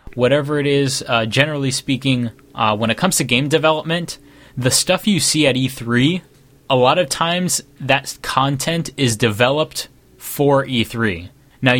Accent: American